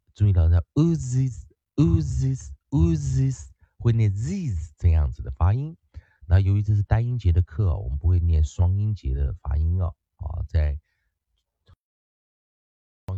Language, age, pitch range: Chinese, 30-49, 80-110 Hz